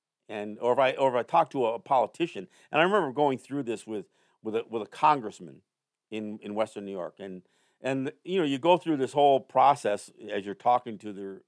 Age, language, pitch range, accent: 50-69, English, 115-175 Hz, American